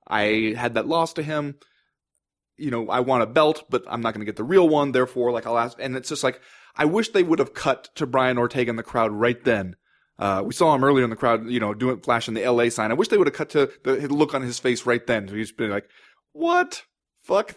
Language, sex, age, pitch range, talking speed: English, male, 20-39, 115-160 Hz, 265 wpm